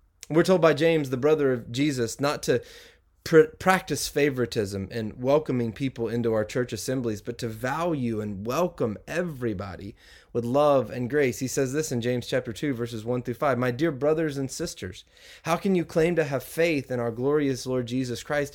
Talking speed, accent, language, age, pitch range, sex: 190 wpm, American, English, 30-49, 115-165 Hz, male